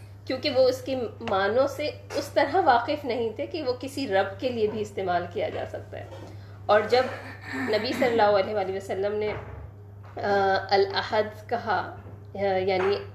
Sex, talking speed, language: female, 160 wpm, Urdu